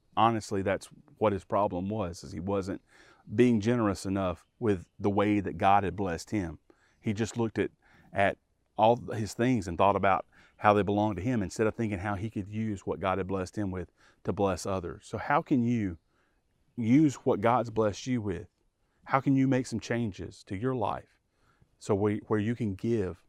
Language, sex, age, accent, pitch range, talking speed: English, male, 40-59, American, 100-115 Hz, 200 wpm